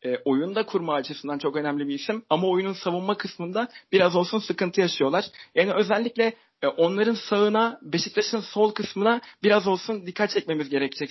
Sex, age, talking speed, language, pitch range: male, 40-59, 145 wpm, Turkish, 165-220 Hz